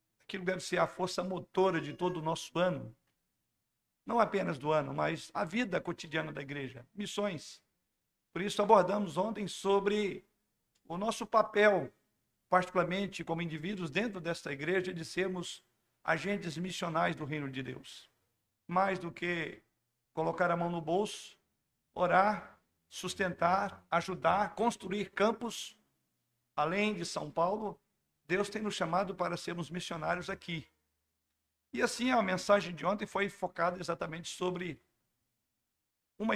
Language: Portuguese